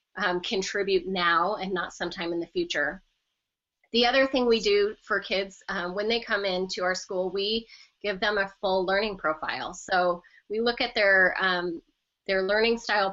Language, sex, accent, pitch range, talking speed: English, female, American, 180-215 Hz, 180 wpm